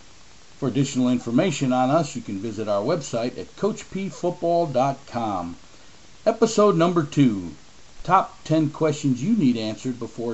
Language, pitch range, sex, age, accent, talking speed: English, 115-155 Hz, male, 50-69, American, 130 wpm